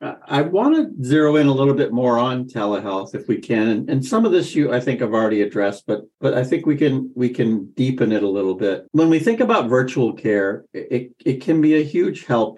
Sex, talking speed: male, 245 wpm